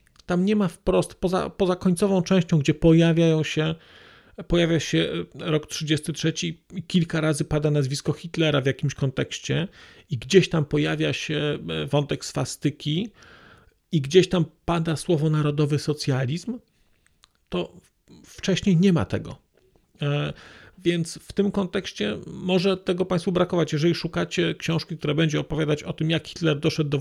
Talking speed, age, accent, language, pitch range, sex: 140 wpm, 40-59, native, Polish, 150-180 Hz, male